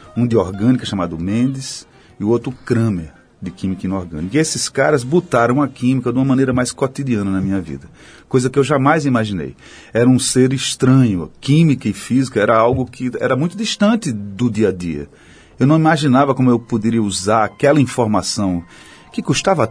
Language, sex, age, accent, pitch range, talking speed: Portuguese, male, 40-59, Brazilian, 105-145 Hz, 180 wpm